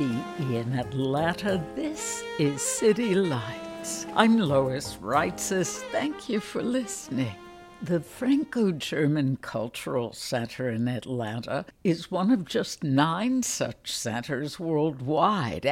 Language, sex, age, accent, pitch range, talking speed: English, female, 60-79, American, 130-185 Hz, 105 wpm